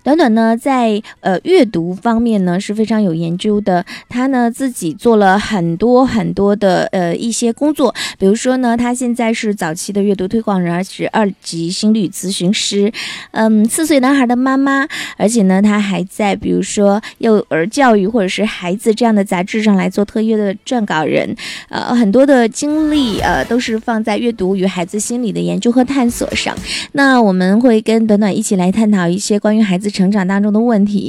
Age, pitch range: 20-39, 195-240 Hz